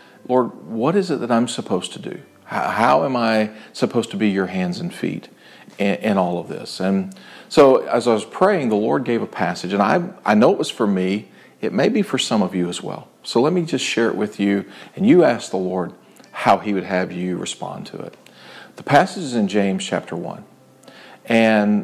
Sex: male